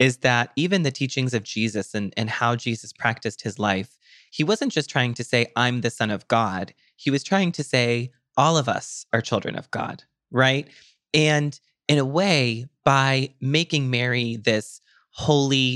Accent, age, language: American, 20-39, English